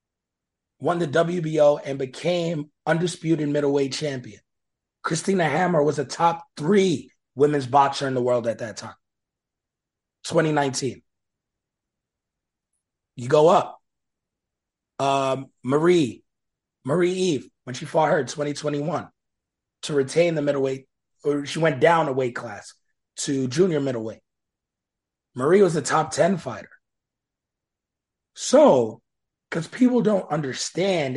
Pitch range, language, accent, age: 130-165 Hz, English, American, 30-49